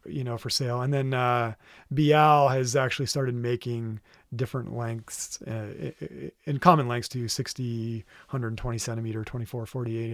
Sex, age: male, 30-49